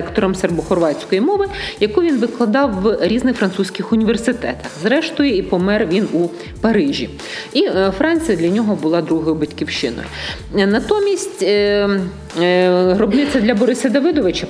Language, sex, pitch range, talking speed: Ukrainian, female, 185-260 Hz, 115 wpm